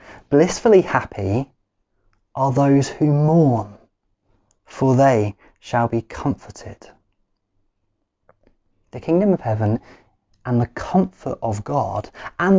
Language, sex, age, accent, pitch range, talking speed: English, male, 30-49, British, 120-170 Hz, 100 wpm